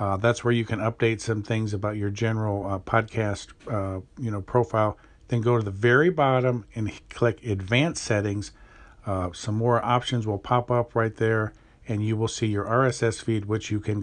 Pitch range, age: 115-155 Hz, 50-69